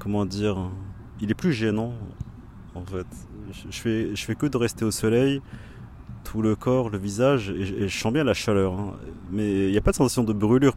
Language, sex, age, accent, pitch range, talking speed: French, male, 30-49, French, 95-115 Hz, 210 wpm